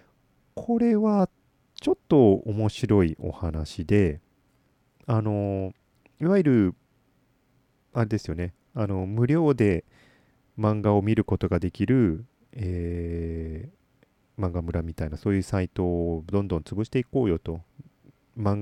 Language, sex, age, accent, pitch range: Japanese, male, 30-49, native, 95-135 Hz